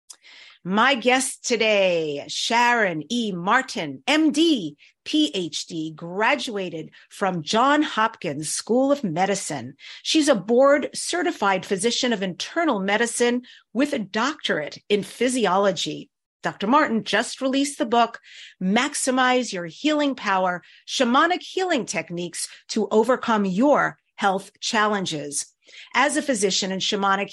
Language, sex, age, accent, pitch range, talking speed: English, female, 50-69, American, 190-265 Hz, 110 wpm